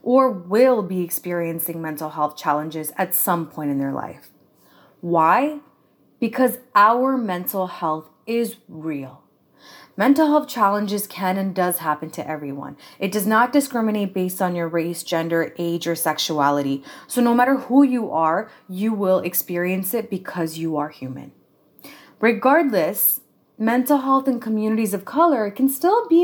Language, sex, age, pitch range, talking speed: English, female, 20-39, 170-265 Hz, 150 wpm